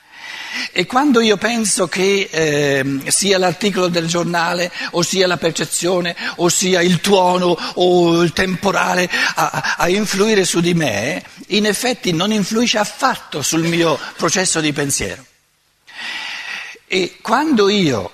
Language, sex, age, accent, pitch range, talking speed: Italian, male, 60-79, native, 160-210 Hz, 130 wpm